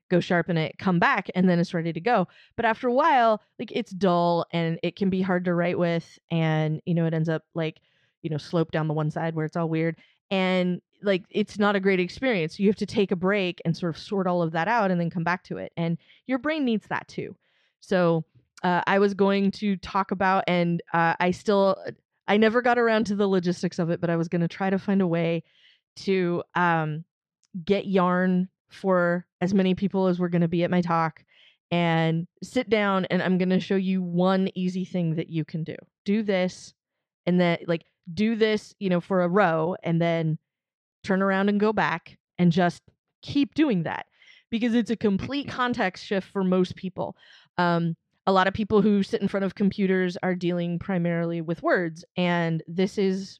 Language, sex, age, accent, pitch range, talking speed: English, female, 20-39, American, 170-195 Hz, 215 wpm